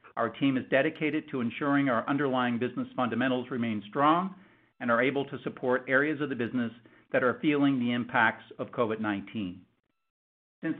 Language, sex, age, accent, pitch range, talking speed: English, male, 50-69, American, 125-150 Hz, 160 wpm